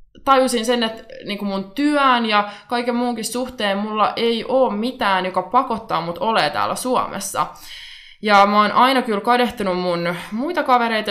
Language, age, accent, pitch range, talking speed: Finnish, 20-39, native, 180-235 Hz, 160 wpm